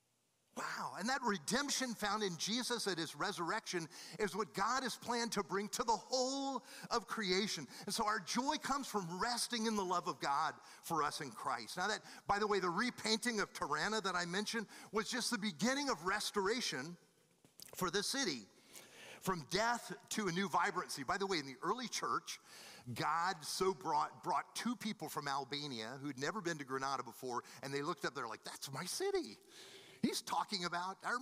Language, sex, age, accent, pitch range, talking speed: English, male, 40-59, American, 175-230 Hz, 190 wpm